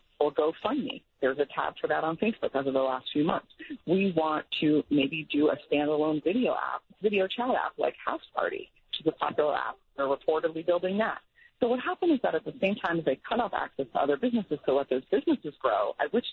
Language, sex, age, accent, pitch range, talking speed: English, female, 40-59, American, 145-205 Hz, 235 wpm